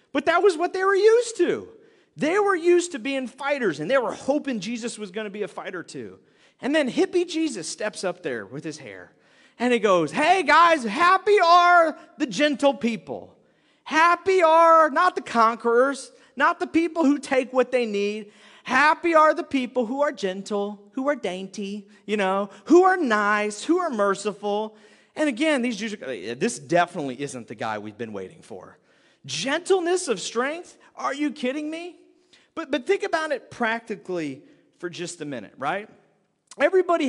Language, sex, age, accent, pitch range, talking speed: English, male, 40-59, American, 200-315 Hz, 180 wpm